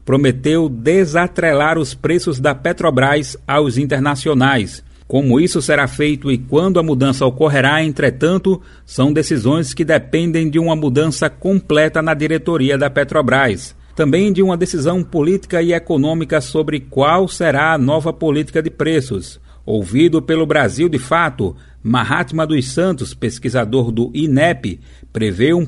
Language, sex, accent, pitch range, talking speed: Portuguese, male, Brazilian, 135-170 Hz, 135 wpm